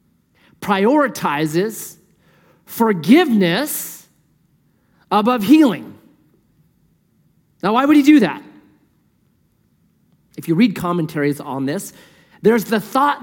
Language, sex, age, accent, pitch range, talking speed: English, male, 40-59, American, 170-230 Hz, 85 wpm